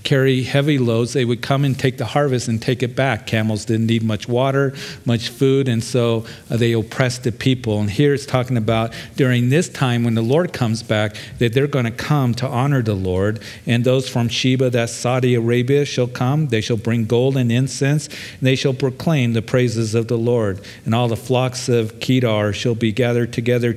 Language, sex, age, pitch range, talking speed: English, male, 50-69, 115-130 Hz, 210 wpm